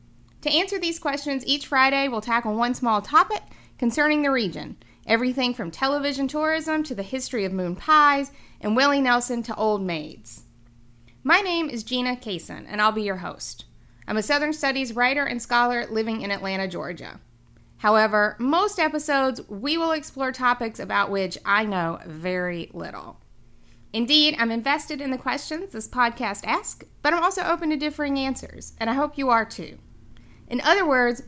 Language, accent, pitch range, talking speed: English, American, 210-285 Hz, 170 wpm